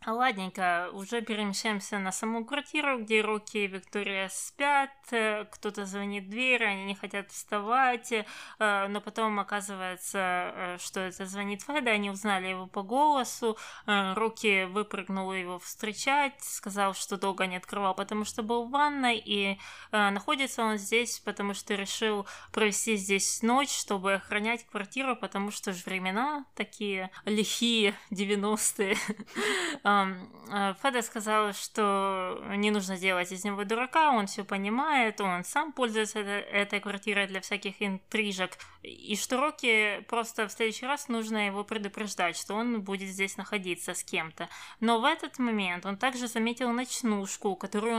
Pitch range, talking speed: 195-230 Hz, 140 wpm